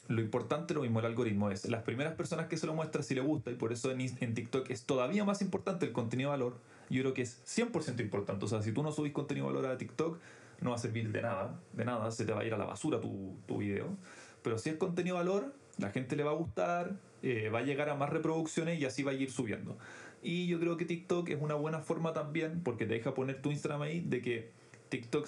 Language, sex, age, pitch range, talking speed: Spanish, male, 20-39, 120-155 Hz, 265 wpm